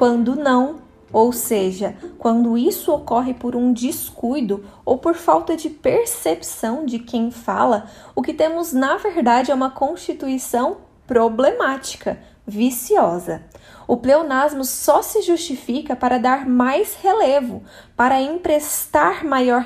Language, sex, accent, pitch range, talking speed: Portuguese, female, Brazilian, 230-275 Hz, 120 wpm